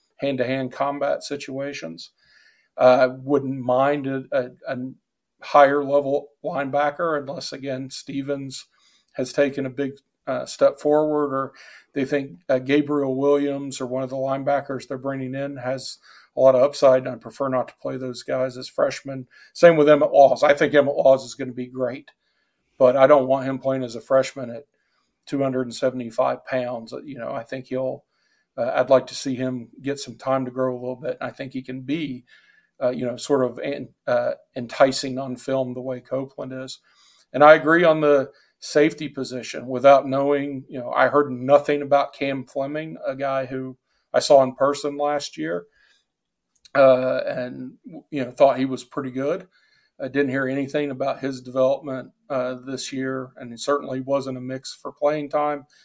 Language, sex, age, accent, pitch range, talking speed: English, male, 50-69, American, 130-145 Hz, 180 wpm